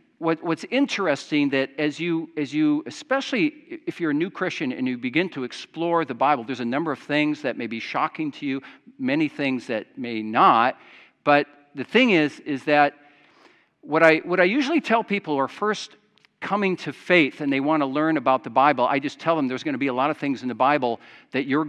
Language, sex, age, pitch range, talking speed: English, male, 50-69, 130-165 Hz, 220 wpm